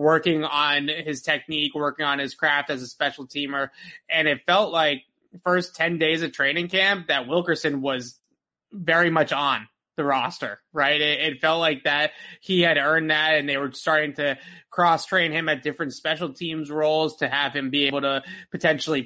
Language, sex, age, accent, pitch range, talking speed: English, male, 20-39, American, 140-165 Hz, 190 wpm